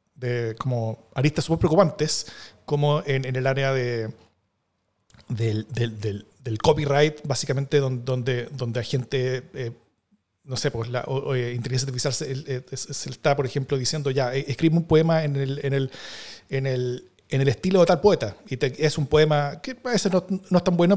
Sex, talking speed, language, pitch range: male, 185 wpm, Spanish, 140-170 Hz